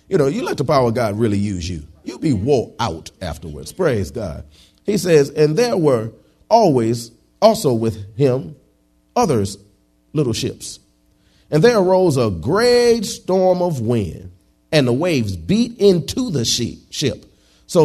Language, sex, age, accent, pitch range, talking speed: English, male, 40-59, American, 115-160 Hz, 155 wpm